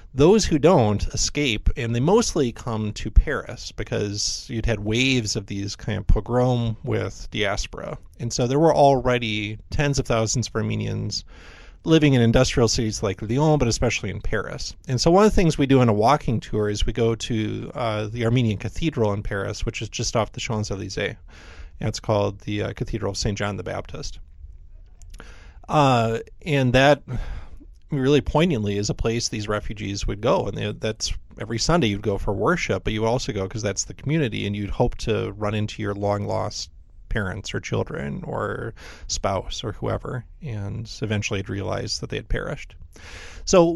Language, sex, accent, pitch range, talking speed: English, male, American, 100-125 Hz, 180 wpm